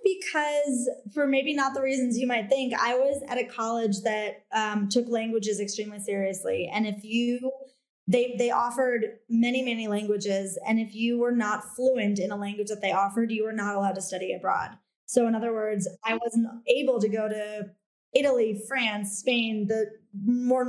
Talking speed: 185 wpm